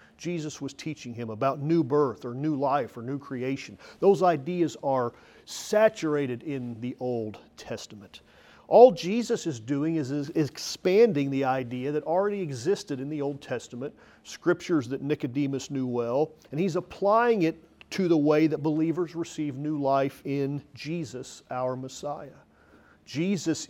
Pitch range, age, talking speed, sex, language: 125-165 Hz, 40-59, 150 wpm, male, English